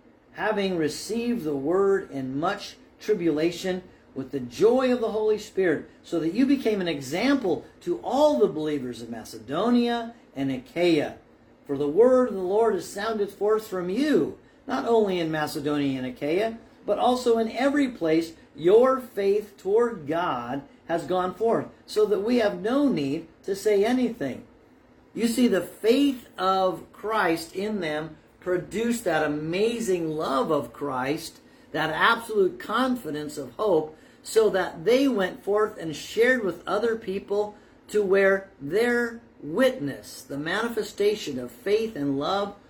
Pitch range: 150-230 Hz